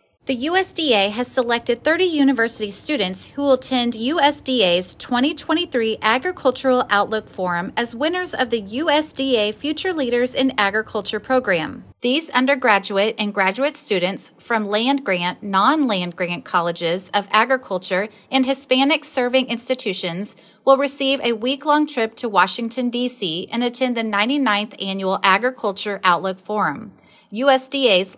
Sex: female